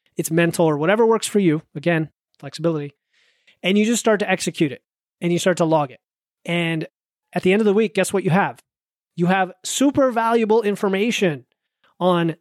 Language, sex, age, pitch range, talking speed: English, male, 30-49, 165-200 Hz, 190 wpm